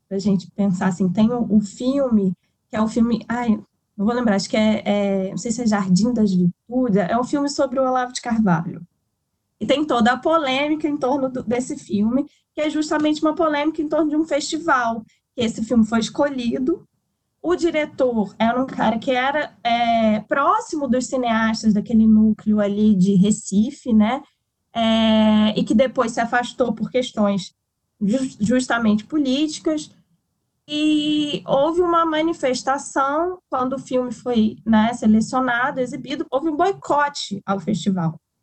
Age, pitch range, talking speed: 10-29, 215-280 Hz, 160 wpm